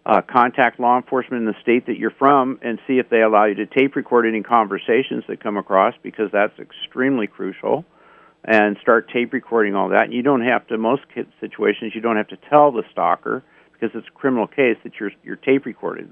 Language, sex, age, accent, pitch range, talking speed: English, male, 50-69, American, 110-135 Hz, 215 wpm